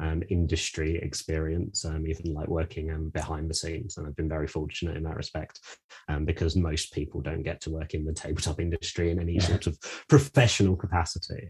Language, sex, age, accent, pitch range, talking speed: English, male, 30-49, British, 80-100 Hz, 195 wpm